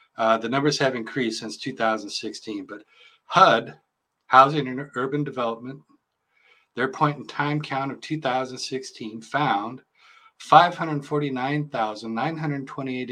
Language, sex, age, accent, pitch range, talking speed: English, male, 50-69, American, 110-135 Hz, 100 wpm